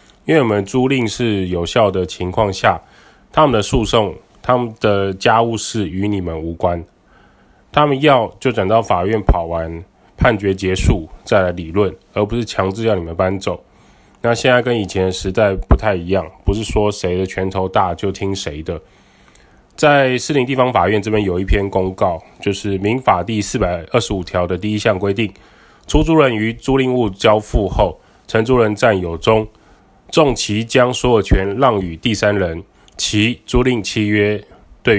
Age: 20-39